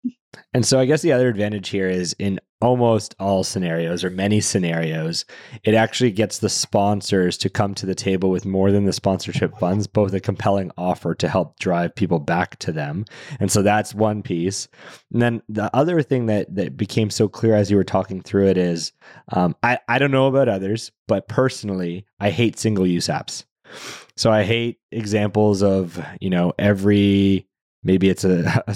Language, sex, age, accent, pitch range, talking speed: English, male, 20-39, American, 95-115 Hz, 190 wpm